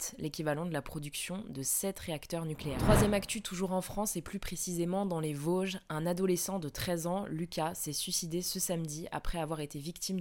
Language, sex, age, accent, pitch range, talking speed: French, female, 20-39, French, 155-180 Hz, 195 wpm